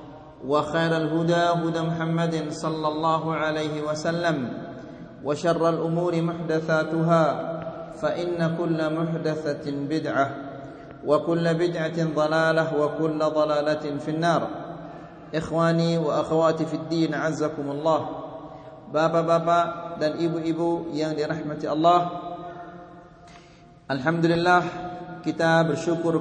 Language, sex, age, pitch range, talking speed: Malay, male, 40-59, 155-170 Hz, 95 wpm